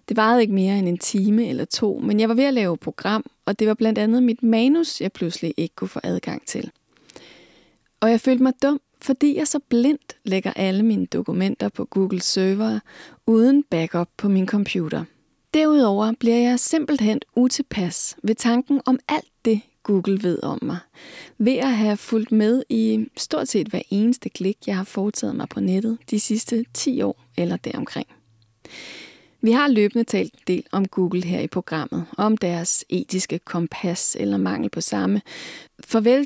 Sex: female